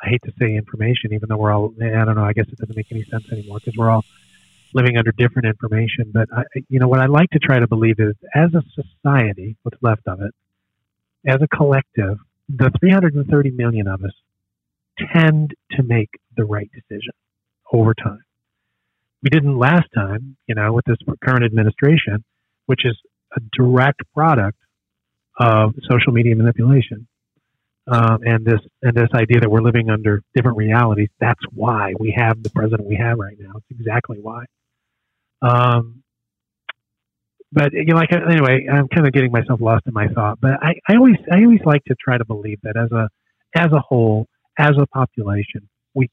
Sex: male